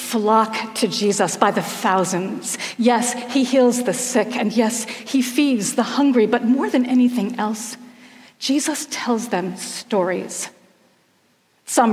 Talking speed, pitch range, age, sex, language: 135 wpm, 200-245 Hz, 40-59, female, English